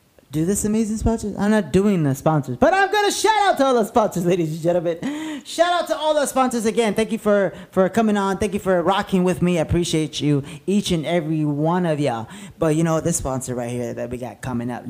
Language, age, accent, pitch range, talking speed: English, 30-49, American, 155-240 Hz, 250 wpm